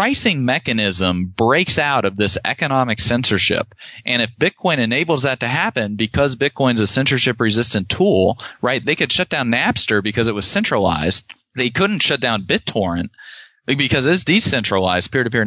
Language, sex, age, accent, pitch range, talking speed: English, male, 30-49, American, 110-145 Hz, 155 wpm